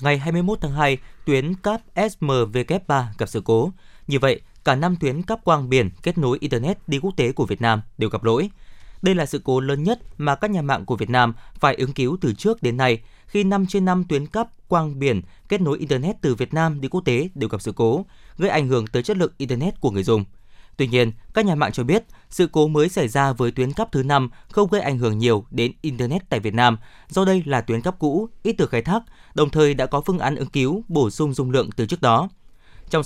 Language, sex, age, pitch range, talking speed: Vietnamese, male, 20-39, 125-175 Hz, 245 wpm